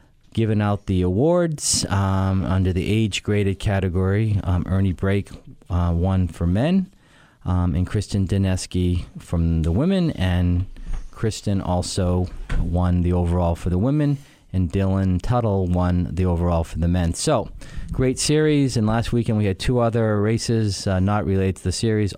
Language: English